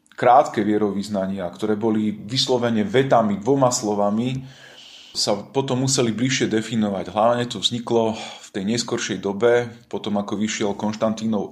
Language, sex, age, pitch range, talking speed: Slovak, male, 30-49, 100-120 Hz, 125 wpm